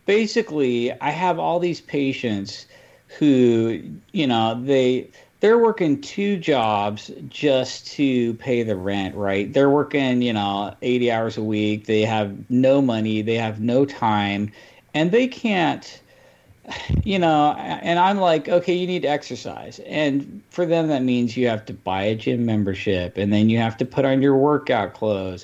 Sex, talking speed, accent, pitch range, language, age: male, 165 wpm, American, 105-140 Hz, English, 40-59